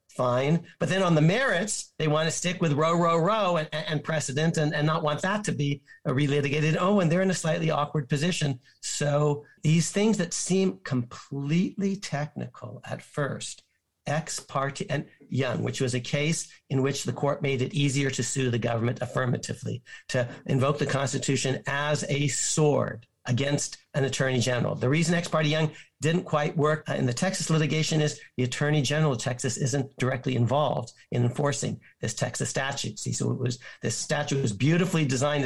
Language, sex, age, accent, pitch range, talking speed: English, male, 50-69, American, 130-155 Hz, 185 wpm